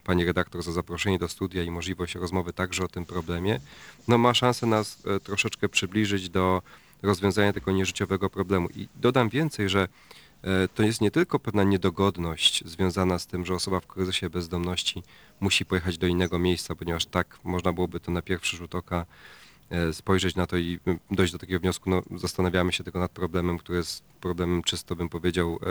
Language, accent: Polish, native